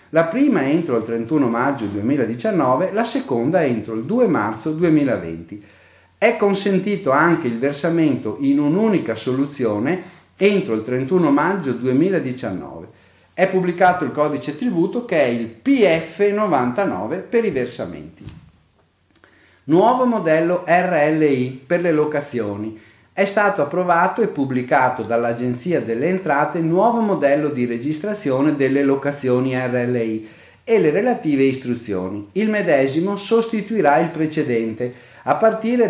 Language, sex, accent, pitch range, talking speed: Italian, male, native, 120-185 Hz, 120 wpm